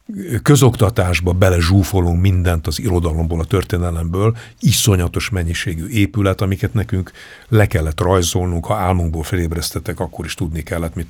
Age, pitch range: 60-79, 85-105 Hz